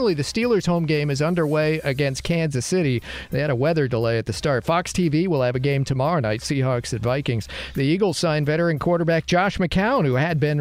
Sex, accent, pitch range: male, American, 135-165 Hz